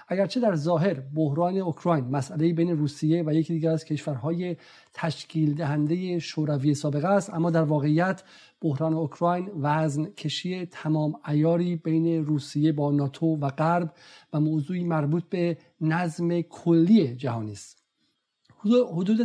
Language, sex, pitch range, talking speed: Persian, male, 155-185 Hz, 130 wpm